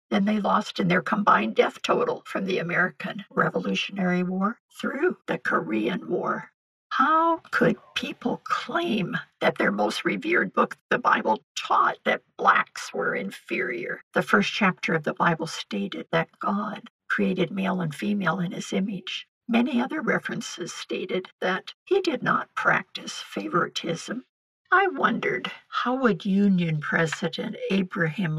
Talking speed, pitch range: 140 wpm, 170-220 Hz